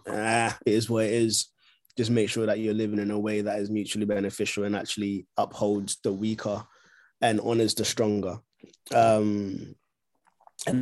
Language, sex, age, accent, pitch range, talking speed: English, male, 20-39, British, 100-110 Hz, 165 wpm